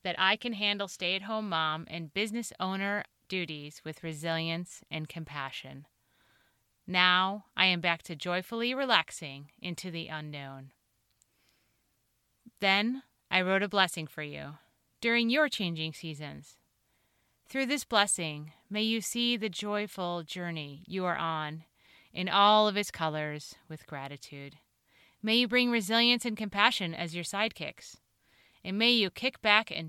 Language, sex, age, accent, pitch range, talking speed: English, female, 30-49, American, 155-210 Hz, 140 wpm